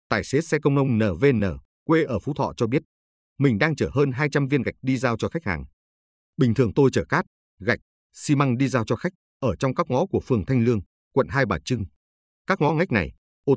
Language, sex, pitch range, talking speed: Vietnamese, male, 90-140 Hz, 235 wpm